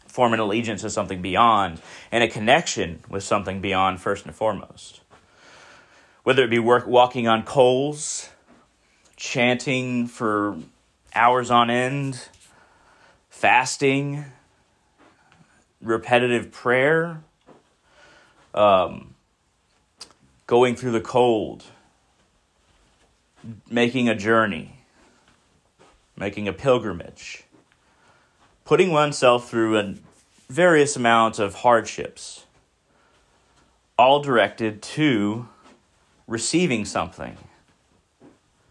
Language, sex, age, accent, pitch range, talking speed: English, male, 30-49, American, 105-130 Hz, 80 wpm